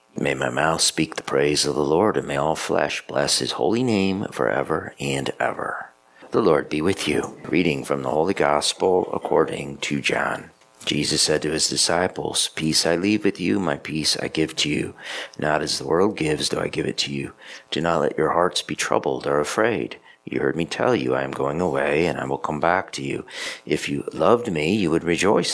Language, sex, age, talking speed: English, male, 40-59, 220 wpm